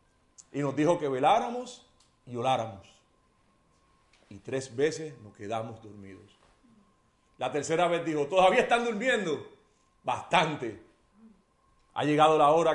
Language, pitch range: Spanish, 130-180 Hz